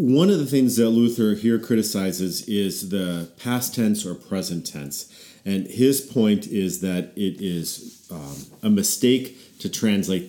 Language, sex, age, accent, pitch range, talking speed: English, male, 40-59, American, 85-110 Hz, 155 wpm